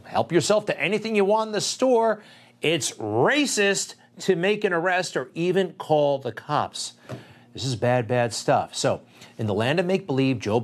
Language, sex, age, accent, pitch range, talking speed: English, male, 40-59, American, 110-140 Hz, 180 wpm